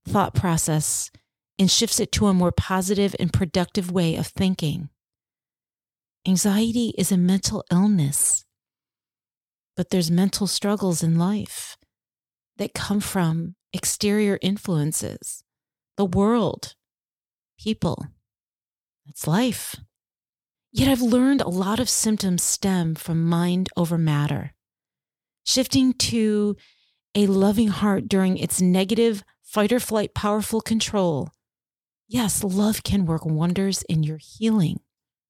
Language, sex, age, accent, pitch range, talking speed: English, female, 30-49, American, 165-215 Hz, 115 wpm